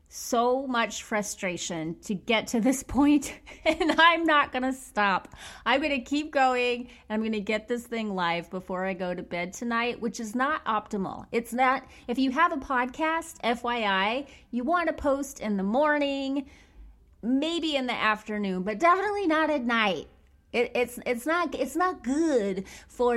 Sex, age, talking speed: female, 30-49, 165 wpm